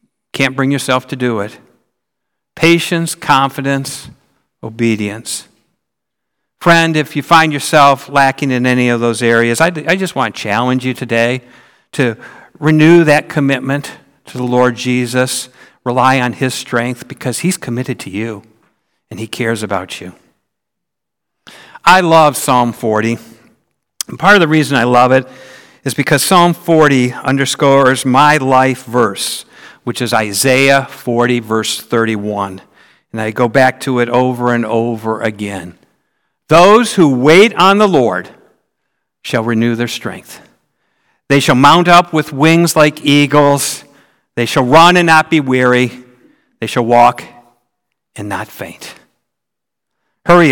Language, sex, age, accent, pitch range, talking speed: English, male, 60-79, American, 120-145 Hz, 140 wpm